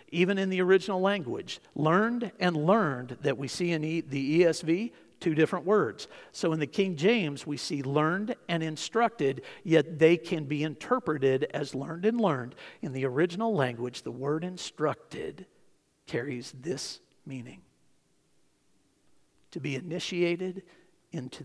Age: 50-69